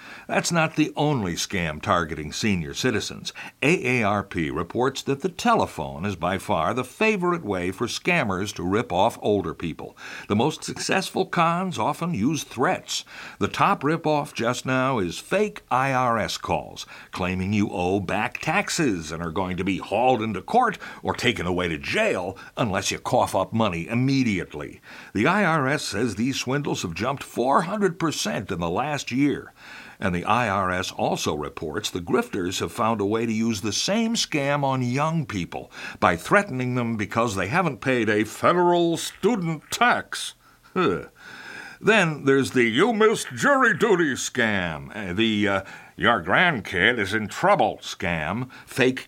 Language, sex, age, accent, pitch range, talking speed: English, male, 60-79, American, 105-170 Hz, 155 wpm